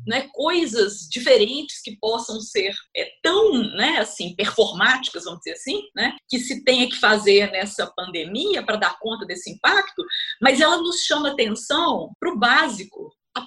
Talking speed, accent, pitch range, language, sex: 150 wpm, Brazilian, 220-315 Hz, Portuguese, female